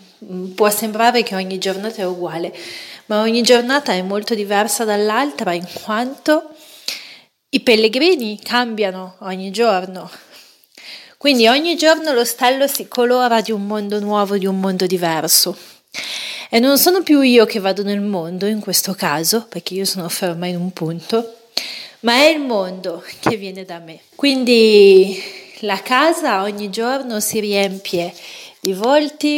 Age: 30-49